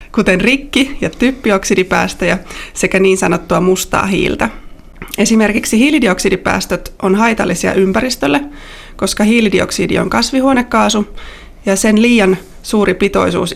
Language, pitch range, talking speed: Finnish, 190-230 Hz, 100 wpm